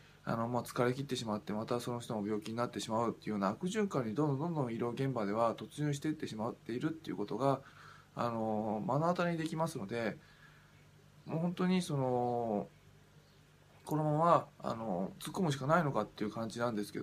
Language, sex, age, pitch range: Japanese, male, 20-39, 115-155 Hz